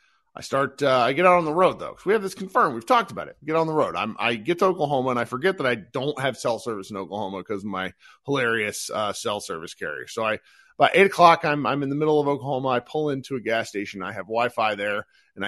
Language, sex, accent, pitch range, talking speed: English, male, American, 120-185 Hz, 265 wpm